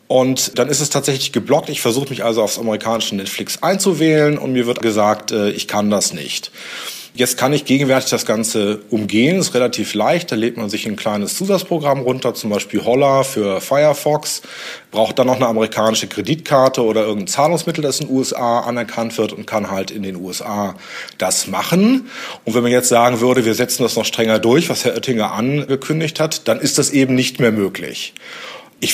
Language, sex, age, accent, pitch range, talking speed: German, male, 30-49, German, 115-145 Hz, 195 wpm